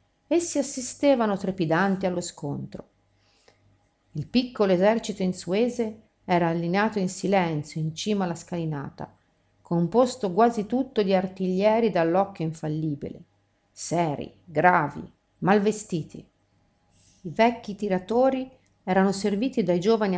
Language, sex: Italian, female